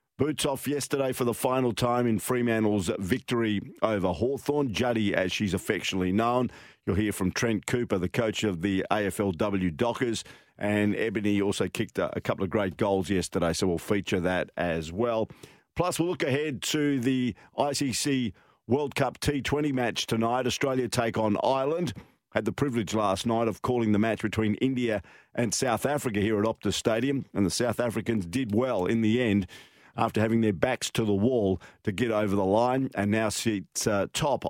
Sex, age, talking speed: male, 50-69, 180 wpm